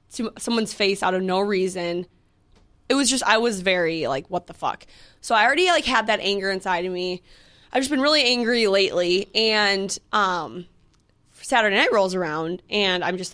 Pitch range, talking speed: 180-235 Hz, 185 wpm